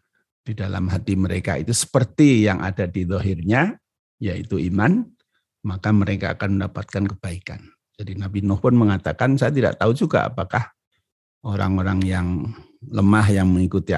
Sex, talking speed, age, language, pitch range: male, 135 wpm, 50-69, Indonesian, 95-120 Hz